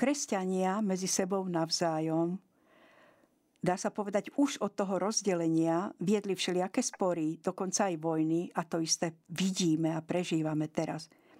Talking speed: 125 wpm